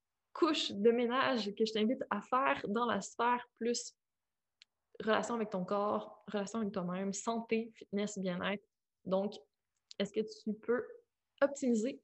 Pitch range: 215-285 Hz